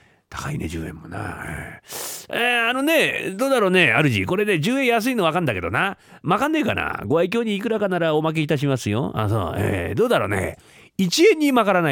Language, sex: Japanese, male